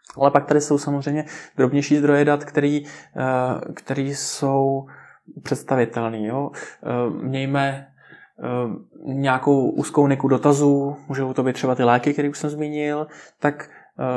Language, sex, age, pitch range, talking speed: Czech, male, 20-39, 130-145 Hz, 110 wpm